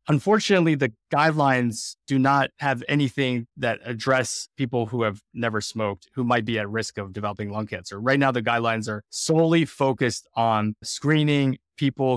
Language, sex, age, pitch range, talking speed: English, male, 20-39, 110-135 Hz, 165 wpm